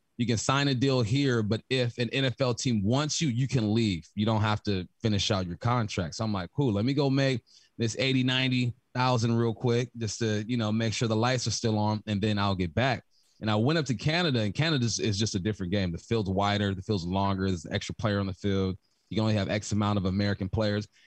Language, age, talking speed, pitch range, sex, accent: English, 30-49, 255 wpm, 100-125 Hz, male, American